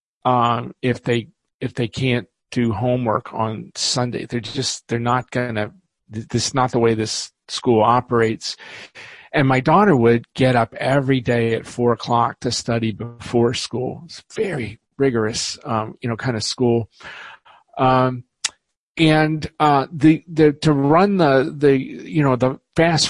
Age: 40-59